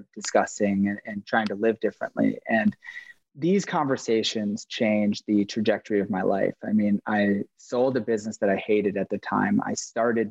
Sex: male